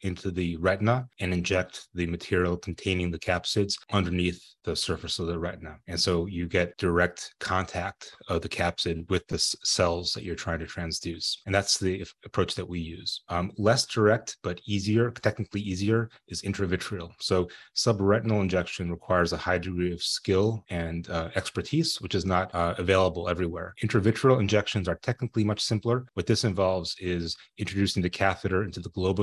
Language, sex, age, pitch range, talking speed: English, male, 30-49, 90-105 Hz, 170 wpm